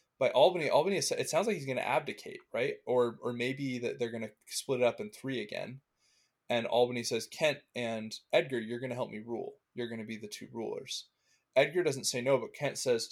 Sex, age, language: male, 20-39, English